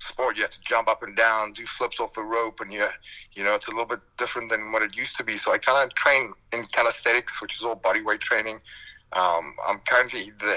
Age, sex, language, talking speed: 30-49, male, English, 255 wpm